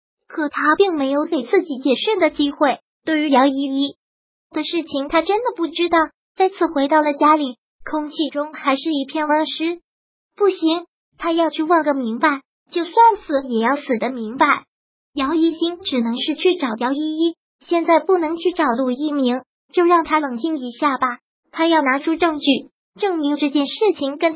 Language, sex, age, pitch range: Chinese, male, 30-49, 275-335 Hz